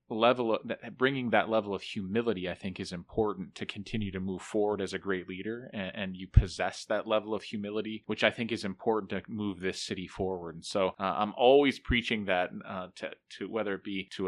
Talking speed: 220 wpm